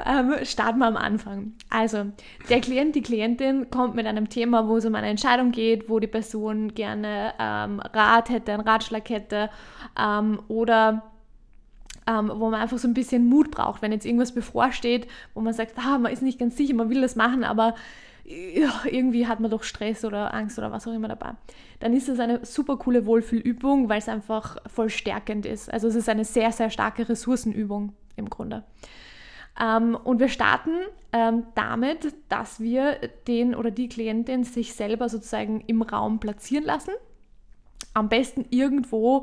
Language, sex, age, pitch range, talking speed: German, female, 20-39, 220-250 Hz, 175 wpm